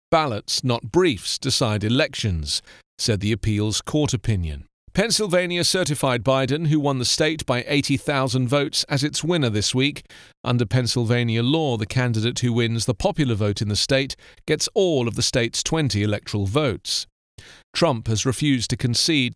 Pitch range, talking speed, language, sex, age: 115-155 Hz, 160 wpm, English, male, 40-59